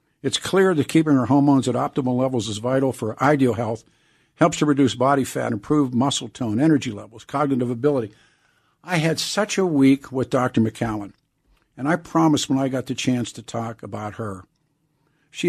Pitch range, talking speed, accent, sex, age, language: 125-155 Hz, 180 wpm, American, male, 50-69, English